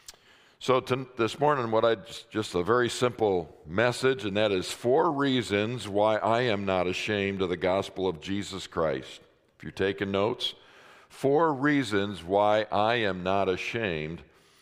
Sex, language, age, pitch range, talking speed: male, English, 50-69, 100-125 Hz, 160 wpm